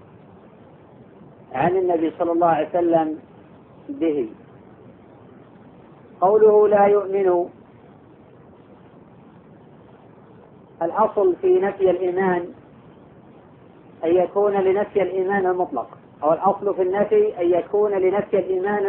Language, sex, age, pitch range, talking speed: Arabic, female, 40-59, 185-210 Hz, 85 wpm